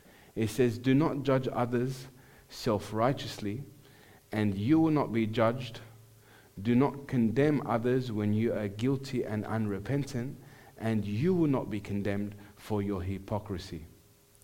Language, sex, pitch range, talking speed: English, male, 110-140 Hz, 135 wpm